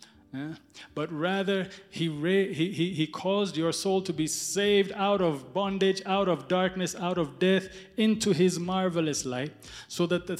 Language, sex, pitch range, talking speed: English, male, 150-185 Hz, 175 wpm